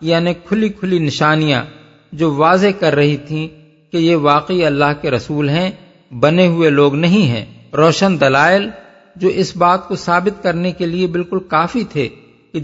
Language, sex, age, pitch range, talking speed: Urdu, male, 50-69, 140-175 Hz, 165 wpm